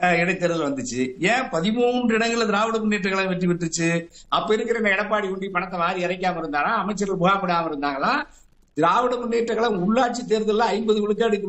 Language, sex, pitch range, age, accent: Tamil, male, 195-240 Hz, 60-79, native